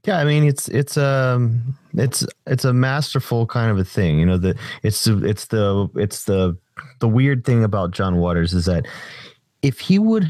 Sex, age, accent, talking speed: male, 30-49, American, 190 wpm